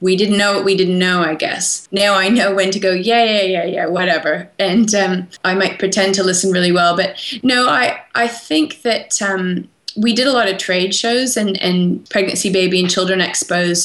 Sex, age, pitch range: female, 20-39, 175-195 Hz